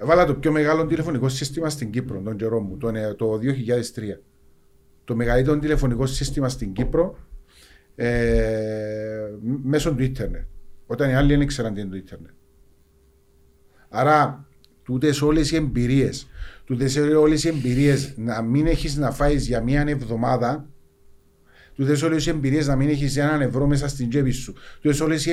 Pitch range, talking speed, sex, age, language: 115-150 Hz, 150 wpm, male, 40-59, Greek